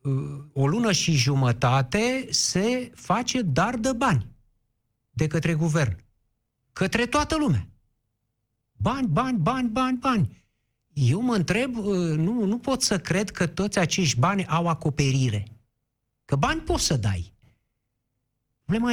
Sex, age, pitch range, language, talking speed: male, 50-69, 125-185 Hz, Romanian, 125 wpm